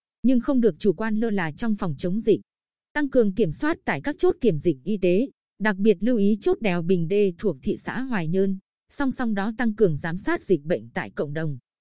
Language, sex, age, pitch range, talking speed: Vietnamese, female, 20-39, 180-235 Hz, 240 wpm